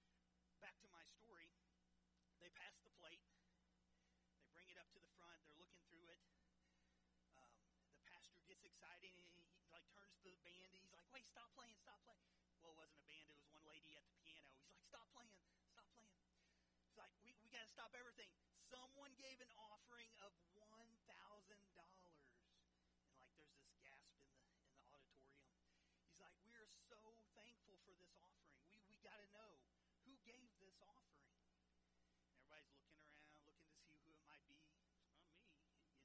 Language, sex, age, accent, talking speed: English, male, 30-49, American, 190 wpm